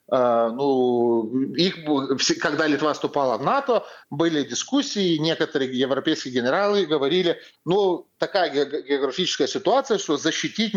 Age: 30-49